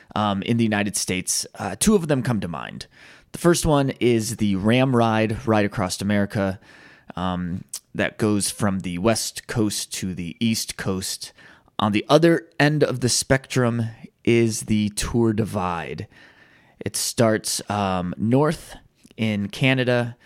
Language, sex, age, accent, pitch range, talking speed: English, male, 20-39, American, 100-135 Hz, 150 wpm